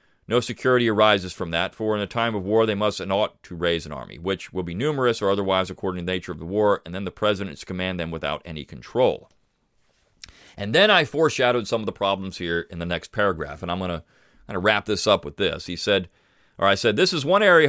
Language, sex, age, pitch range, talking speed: English, male, 40-59, 100-145 Hz, 245 wpm